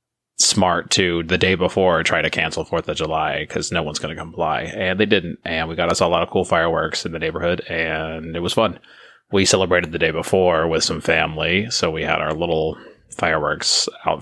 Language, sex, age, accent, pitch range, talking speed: English, male, 30-49, American, 85-95 Hz, 215 wpm